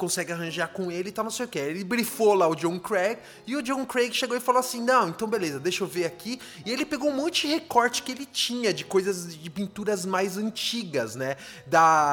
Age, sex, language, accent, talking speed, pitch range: 20-39, male, English, Brazilian, 240 wpm, 175-250 Hz